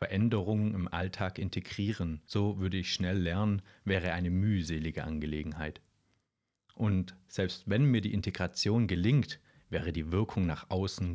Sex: male